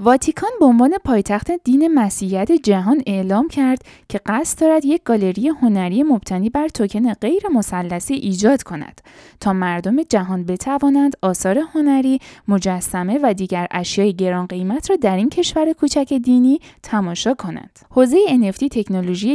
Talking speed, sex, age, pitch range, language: 140 wpm, female, 10-29, 195-285 Hz, Persian